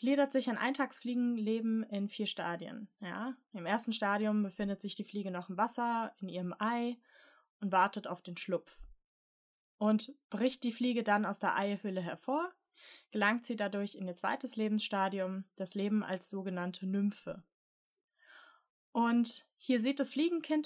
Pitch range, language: 200-255 Hz, German